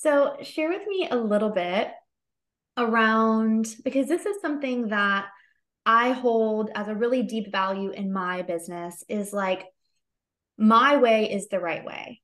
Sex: female